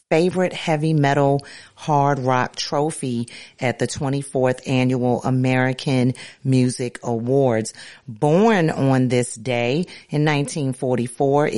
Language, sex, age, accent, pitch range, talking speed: English, female, 40-59, American, 125-145 Hz, 100 wpm